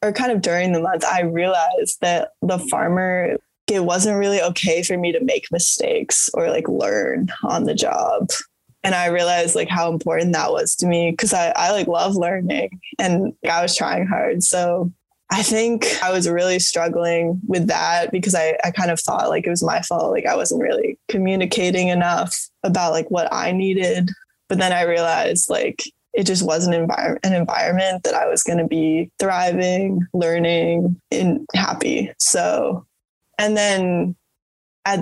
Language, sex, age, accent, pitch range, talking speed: English, female, 10-29, American, 170-210 Hz, 180 wpm